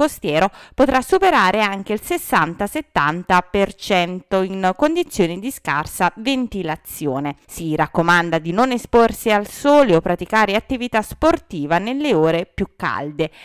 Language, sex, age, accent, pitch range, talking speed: Italian, female, 20-39, native, 175-235 Hz, 115 wpm